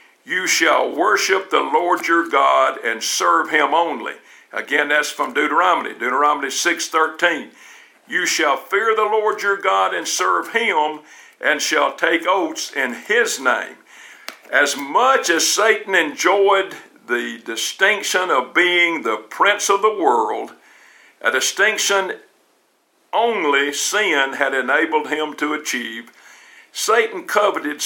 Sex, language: male, English